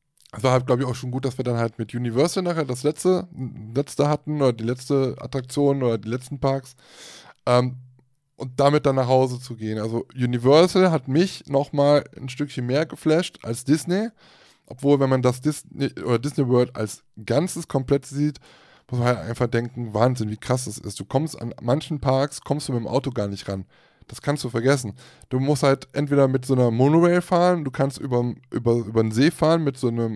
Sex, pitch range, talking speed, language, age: male, 120-145 Hz, 205 wpm, German, 20-39